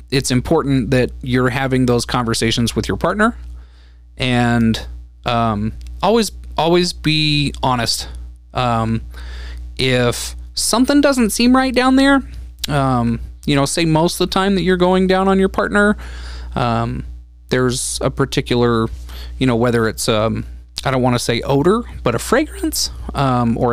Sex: male